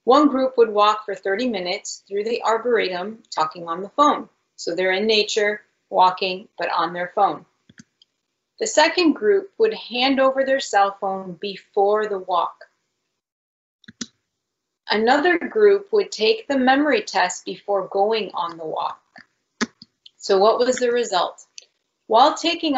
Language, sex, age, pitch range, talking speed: English, female, 30-49, 195-280 Hz, 140 wpm